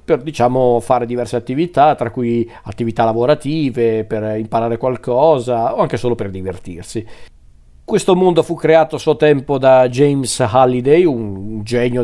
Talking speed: 145 wpm